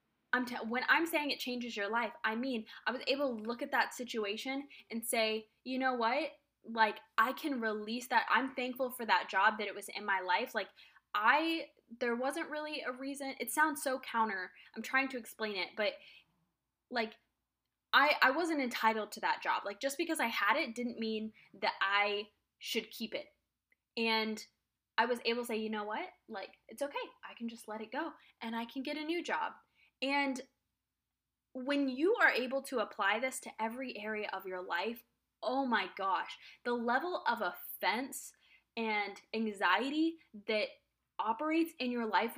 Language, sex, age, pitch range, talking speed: English, female, 10-29, 220-275 Hz, 185 wpm